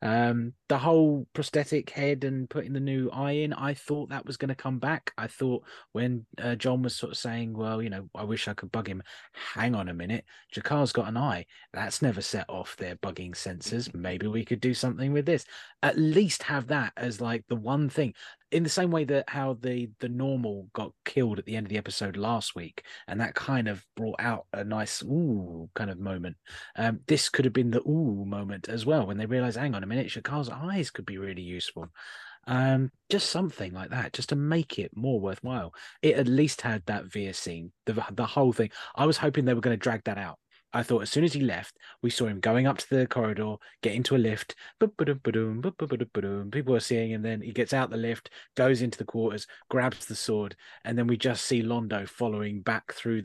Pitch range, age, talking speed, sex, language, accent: 105-135 Hz, 20-39, 225 wpm, male, English, British